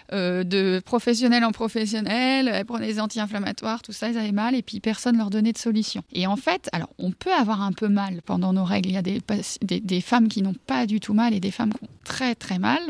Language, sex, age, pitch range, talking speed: French, female, 30-49, 200-235 Hz, 255 wpm